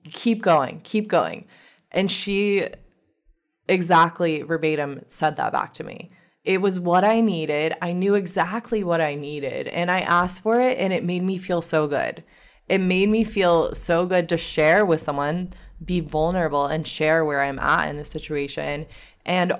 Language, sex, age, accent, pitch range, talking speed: English, female, 20-39, American, 155-195 Hz, 175 wpm